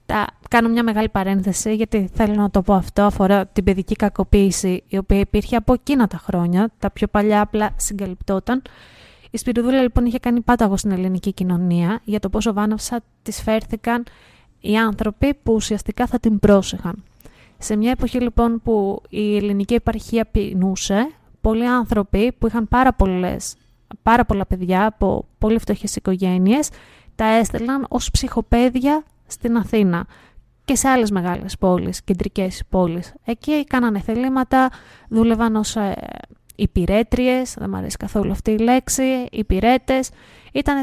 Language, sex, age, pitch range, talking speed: Greek, female, 20-39, 205-245 Hz, 145 wpm